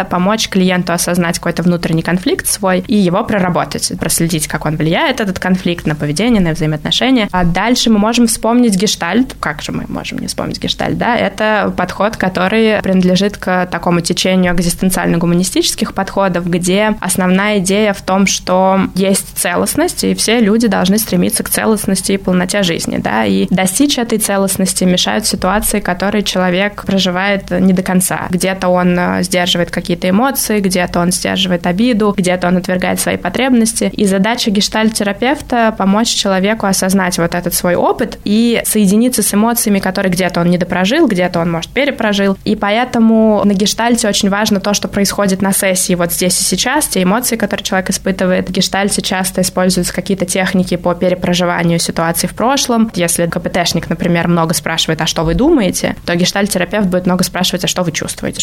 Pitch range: 180-210 Hz